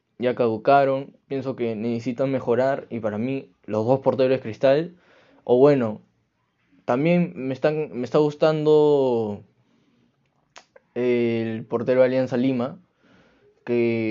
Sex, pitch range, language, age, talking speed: male, 110-140 Hz, Spanish, 10-29, 110 wpm